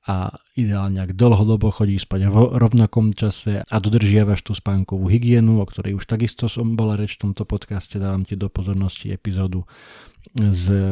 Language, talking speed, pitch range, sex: Slovak, 165 wpm, 95-110 Hz, male